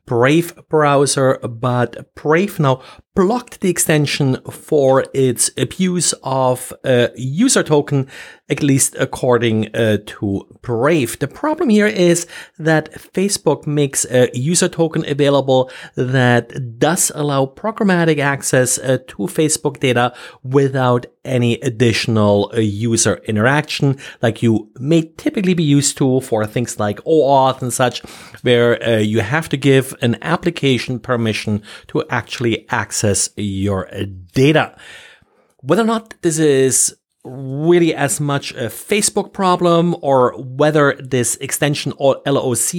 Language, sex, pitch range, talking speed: English, male, 120-160 Hz, 125 wpm